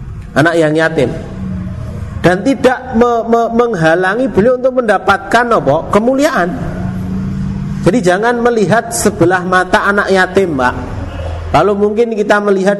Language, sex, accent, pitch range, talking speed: Indonesian, male, native, 135-195 Hz, 115 wpm